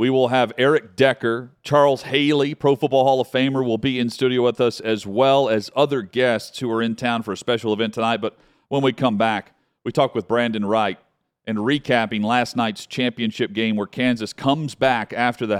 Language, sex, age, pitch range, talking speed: English, male, 40-59, 110-140 Hz, 210 wpm